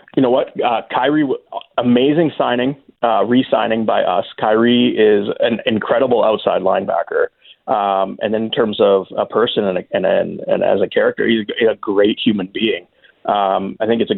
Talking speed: 170 wpm